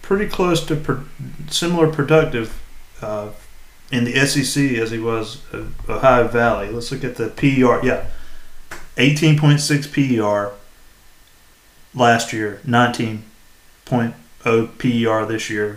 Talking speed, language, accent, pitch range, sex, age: 105 wpm, English, American, 110-130 Hz, male, 30-49